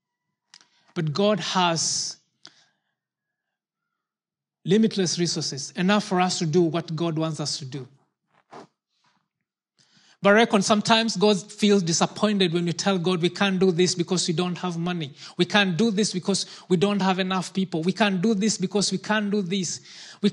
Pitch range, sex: 175-215 Hz, male